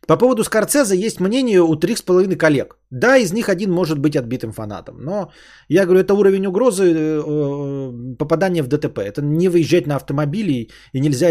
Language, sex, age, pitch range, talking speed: Bulgarian, male, 20-39, 120-175 Hz, 170 wpm